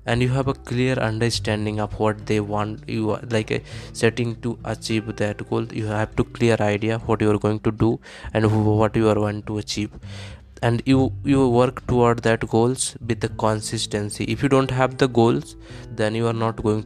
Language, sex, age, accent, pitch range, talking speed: English, male, 20-39, Indian, 105-120 Hz, 205 wpm